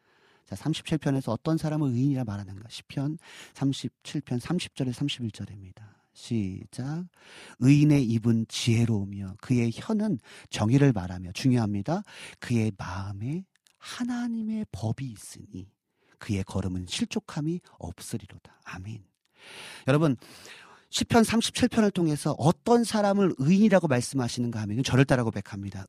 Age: 40-59